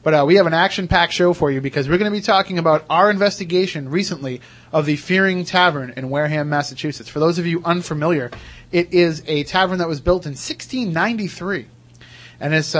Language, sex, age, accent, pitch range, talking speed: English, male, 30-49, American, 145-175 Hz, 190 wpm